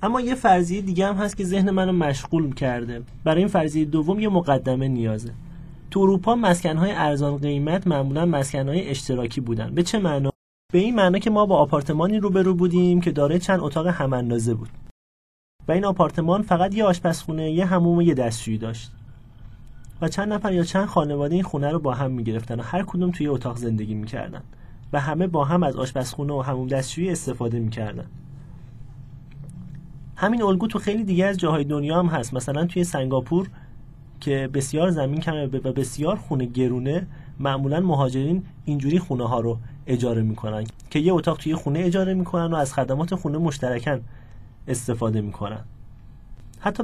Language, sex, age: Persian, male, 30-49